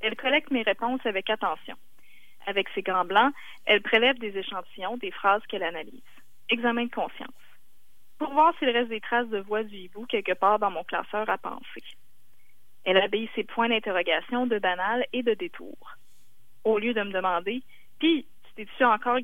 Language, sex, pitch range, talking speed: French, female, 195-250 Hz, 180 wpm